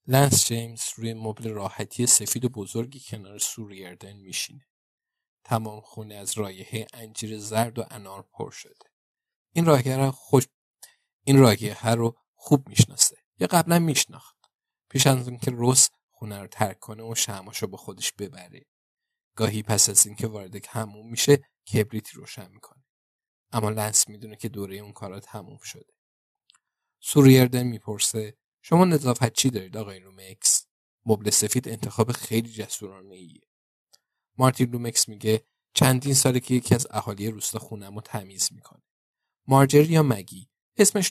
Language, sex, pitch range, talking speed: Persian, male, 105-130 Hz, 145 wpm